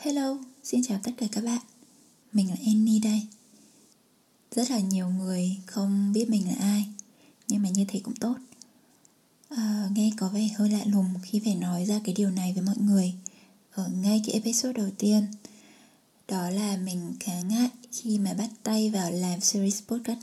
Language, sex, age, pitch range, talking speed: Vietnamese, female, 20-39, 190-225 Hz, 185 wpm